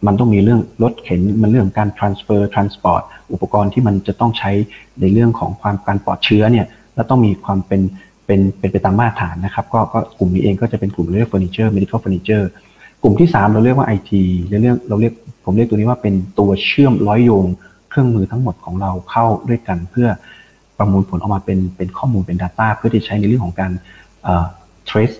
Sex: male